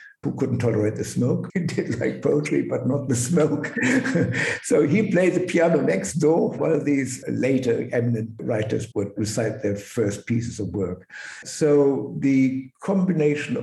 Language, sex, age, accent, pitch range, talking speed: English, male, 60-79, German, 115-150 Hz, 160 wpm